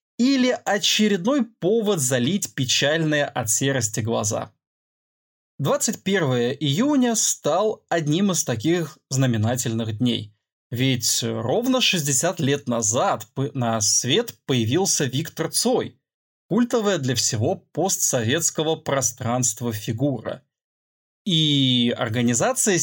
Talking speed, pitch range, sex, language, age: 90 wpm, 120-195 Hz, male, Russian, 20-39